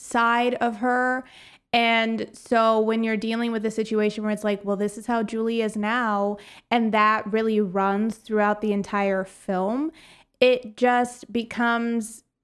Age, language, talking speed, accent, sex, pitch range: 20-39, English, 155 wpm, American, female, 195-225 Hz